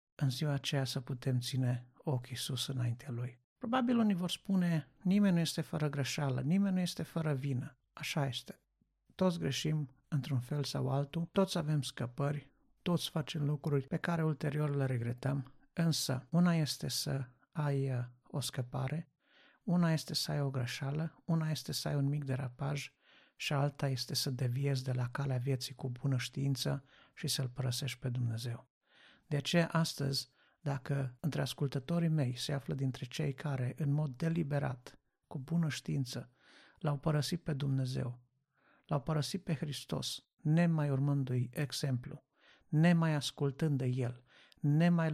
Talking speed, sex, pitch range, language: 150 wpm, male, 130-155 Hz, Romanian